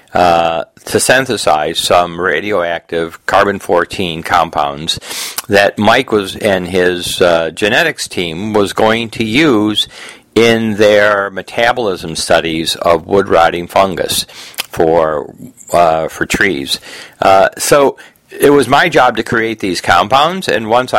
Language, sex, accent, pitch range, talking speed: English, male, American, 90-115 Hz, 125 wpm